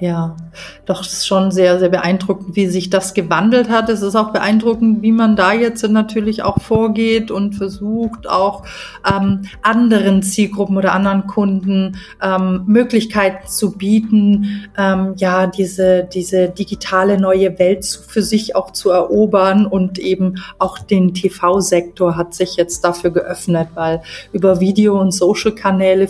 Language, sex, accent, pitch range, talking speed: German, female, German, 185-210 Hz, 145 wpm